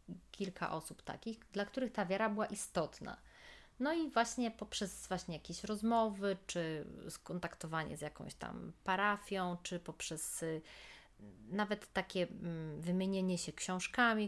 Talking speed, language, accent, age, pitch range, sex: 120 wpm, Polish, native, 30-49, 165-200 Hz, female